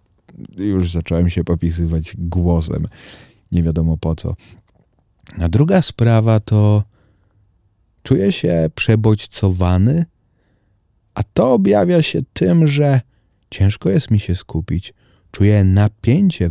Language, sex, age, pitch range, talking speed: Polish, male, 30-49, 95-115 Hz, 105 wpm